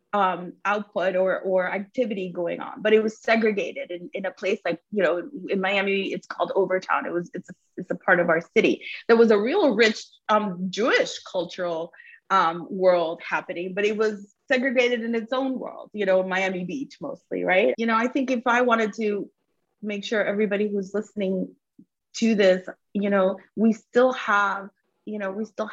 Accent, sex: American, female